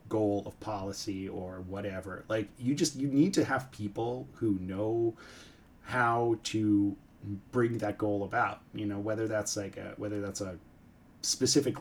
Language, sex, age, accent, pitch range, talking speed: English, male, 30-49, American, 100-125 Hz, 160 wpm